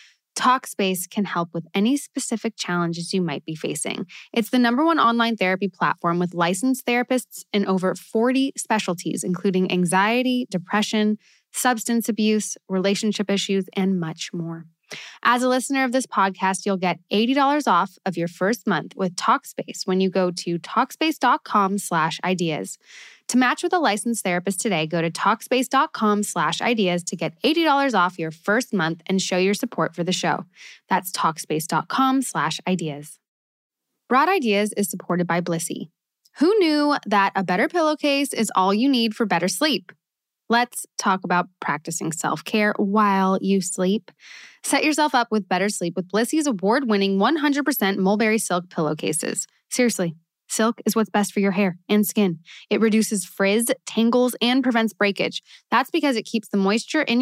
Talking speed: 160 wpm